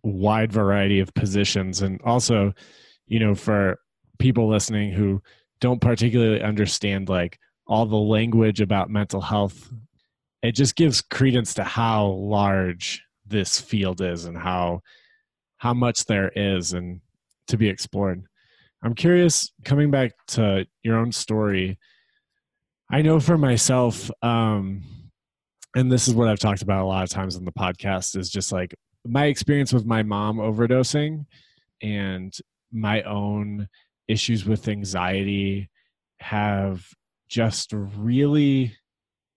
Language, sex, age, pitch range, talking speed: English, male, 20-39, 100-120 Hz, 135 wpm